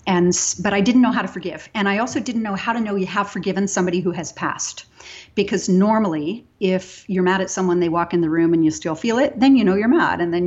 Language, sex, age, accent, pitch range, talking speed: English, female, 40-59, American, 170-205 Hz, 270 wpm